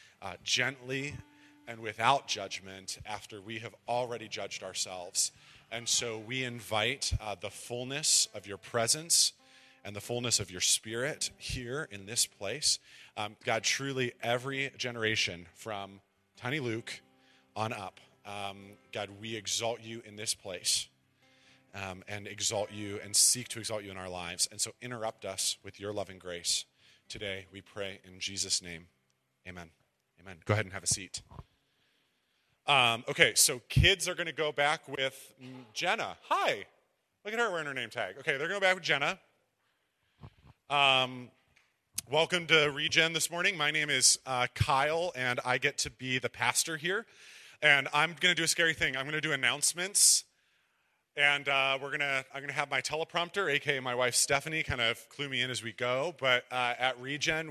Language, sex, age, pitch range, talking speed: English, male, 30-49, 105-140 Hz, 175 wpm